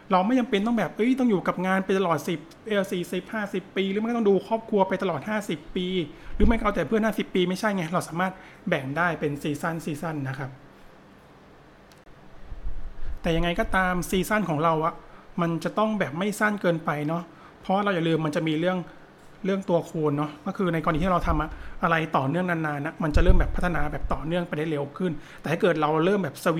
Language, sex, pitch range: Thai, male, 155-195 Hz